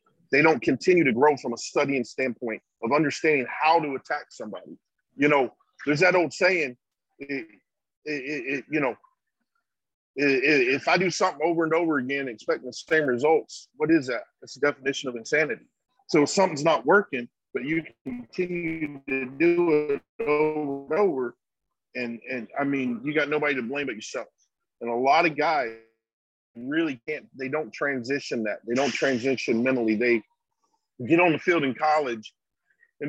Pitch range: 130-160 Hz